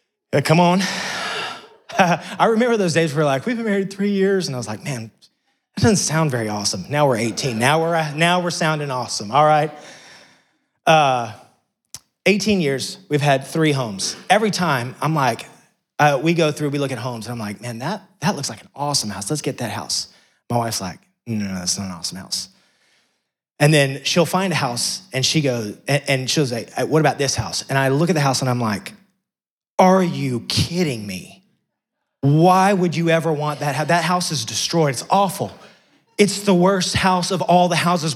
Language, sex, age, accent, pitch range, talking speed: English, male, 30-49, American, 125-185 Hz, 205 wpm